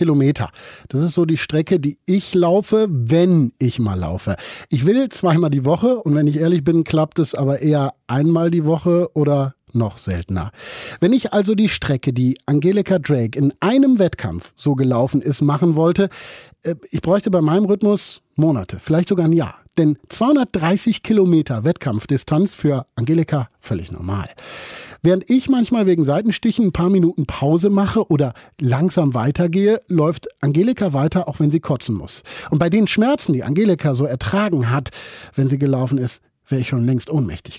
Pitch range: 135-185 Hz